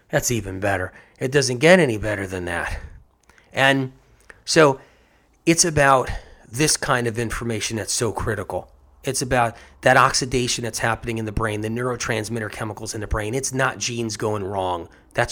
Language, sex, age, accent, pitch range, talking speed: English, male, 30-49, American, 105-135 Hz, 165 wpm